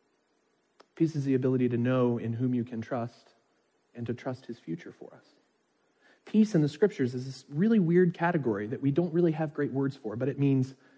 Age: 40-59